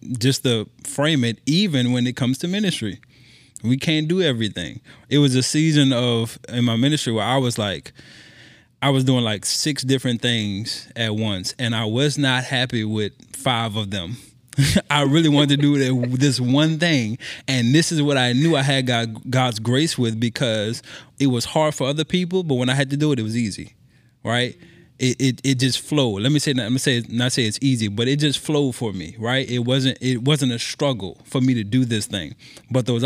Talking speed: 210 wpm